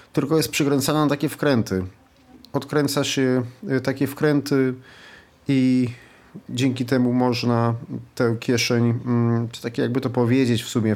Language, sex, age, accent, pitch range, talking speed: Polish, male, 40-59, native, 115-140 Hz, 125 wpm